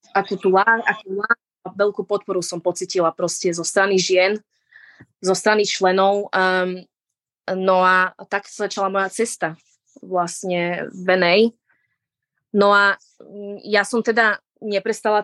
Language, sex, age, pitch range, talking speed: Slovak, female, 20-39, 180-205 Hz, 120 wpm